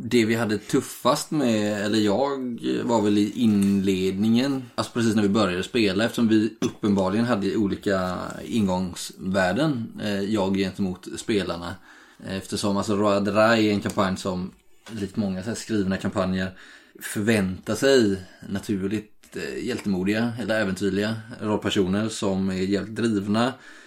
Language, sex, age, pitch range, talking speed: Swedish, male, 20-39, 100-115 Hz, 130 wpm